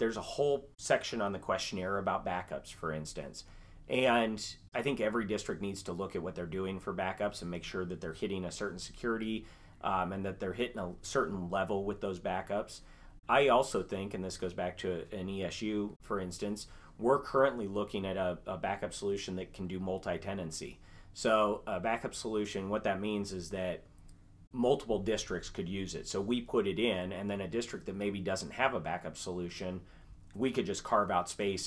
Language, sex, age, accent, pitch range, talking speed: English, male, 30-49, American, 90-105 Hz, 200 wpm